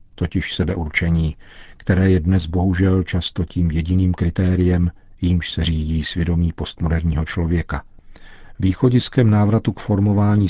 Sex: male